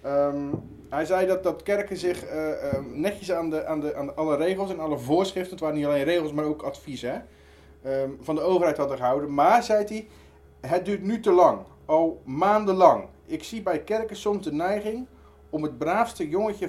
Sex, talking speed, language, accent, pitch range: male, 200 wpm, Dutch, Dutch, 135-190 Hz